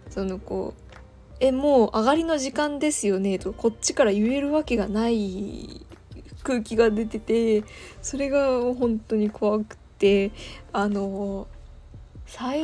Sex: female